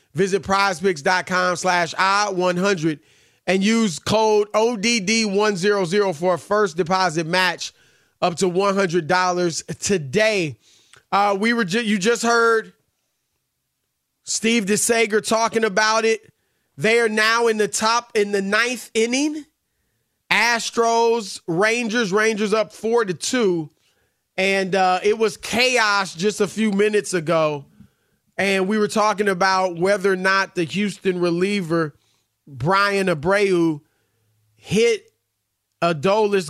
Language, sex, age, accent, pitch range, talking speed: English, male, 30-49, American, 175-210 Hz, 115 wpm